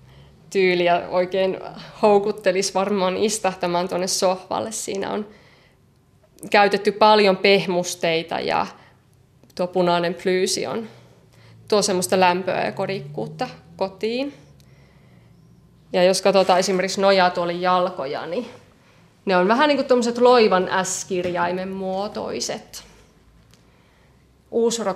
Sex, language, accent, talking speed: female, Finnish, native, 100 wpm